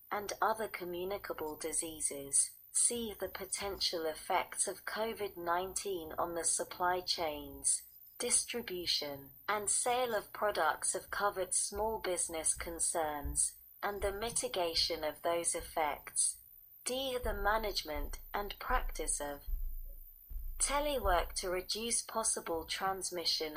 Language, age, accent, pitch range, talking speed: English, 30-49, British, 155-205 Hz, 105 wpm